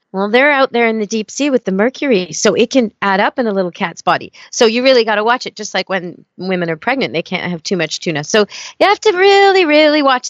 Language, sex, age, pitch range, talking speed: English, female, 40-59, 180-230 Hz, 275 wpm